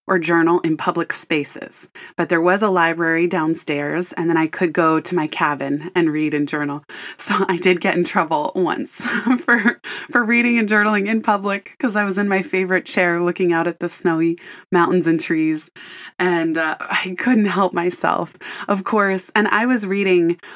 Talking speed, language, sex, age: 185 wpm, English, female, 20-39